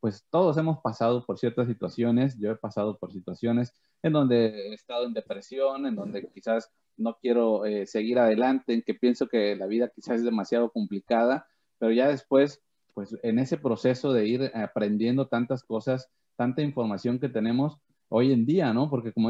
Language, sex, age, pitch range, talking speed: Spanish, male, 30-49, 105-130 Hz, 180 wpm